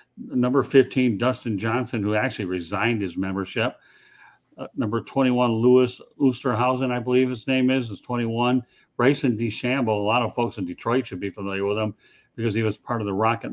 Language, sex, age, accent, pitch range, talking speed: English, male, 50-69, American, 105-125 Hz, 180 wpm